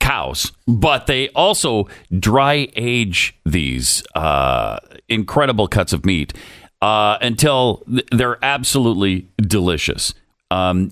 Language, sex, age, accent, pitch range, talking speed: English, male, 40-59, American, 95-140 Hz, 100 wpm